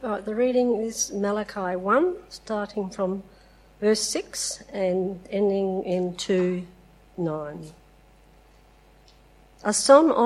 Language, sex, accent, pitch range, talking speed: English, female, Australian, 180-230 Hz, 75 wpm